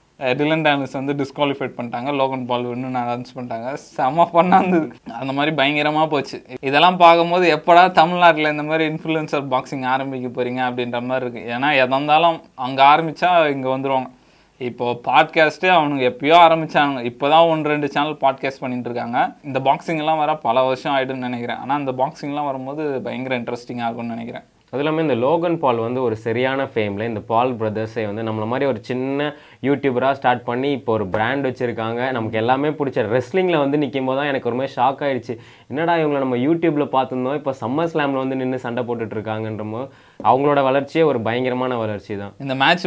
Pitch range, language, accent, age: 125-145 Hz, Tamil, native, 20-39